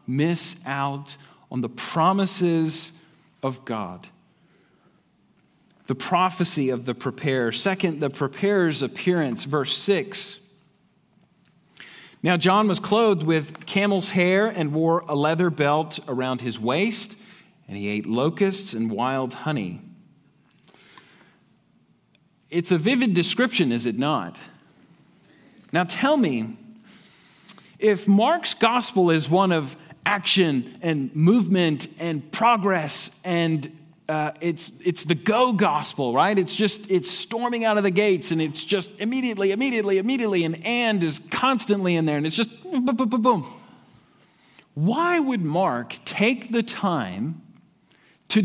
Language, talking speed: English, 130 wpm